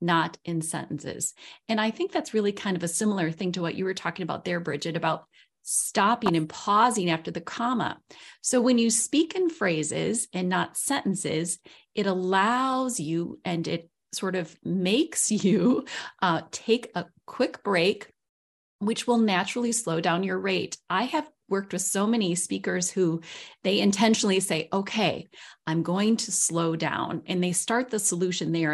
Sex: female